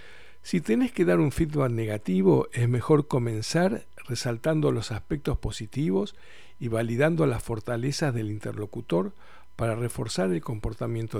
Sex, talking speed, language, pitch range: male, 130 wpm, Spanish, 110-155 Hz